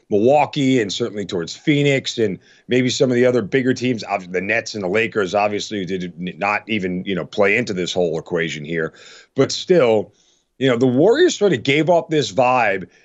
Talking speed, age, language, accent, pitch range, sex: 195 wpm, 40-59, English, American, 110-135 Hz, male